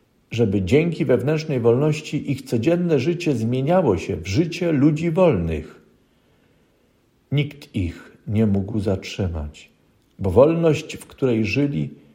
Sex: male